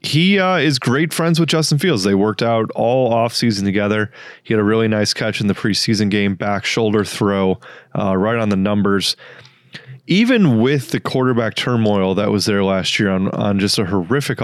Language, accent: English, American